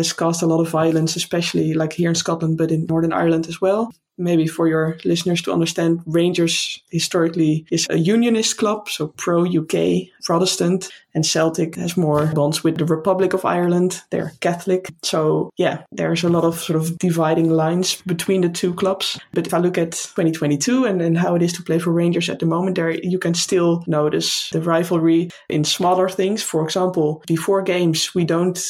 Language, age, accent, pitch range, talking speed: English, 20-39, Dutch, 160-185 Hz, 190 wpm